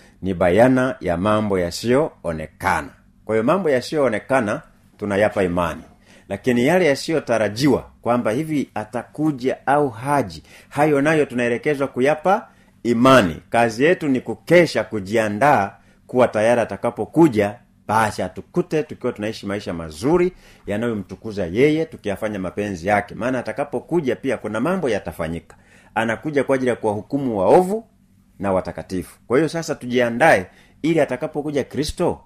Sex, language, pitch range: male, Swahili, 100-135 Hz